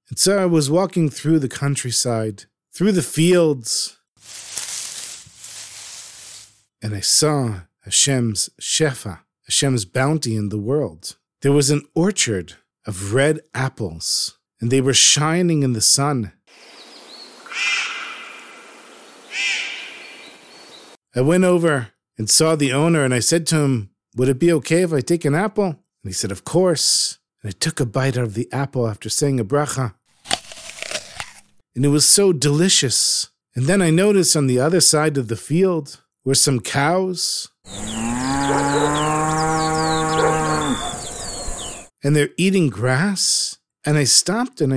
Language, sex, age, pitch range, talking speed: English, male, 50-69, 125-175 Hz, 135 wpm